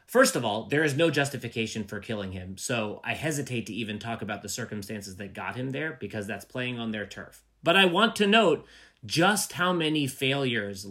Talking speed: 210 wpm